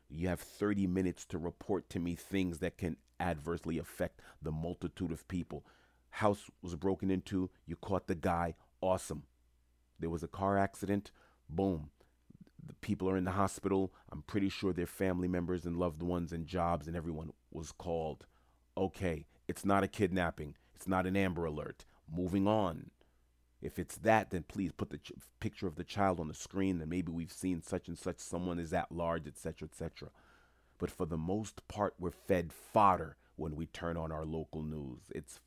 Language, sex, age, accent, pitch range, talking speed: English, male, 40-59, American, 80-95 Hz, 185 wpm